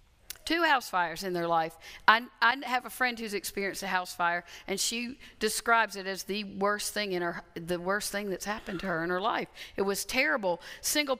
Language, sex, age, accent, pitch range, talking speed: English, female, 50-69, American, 180-225 Hz, 215 wpm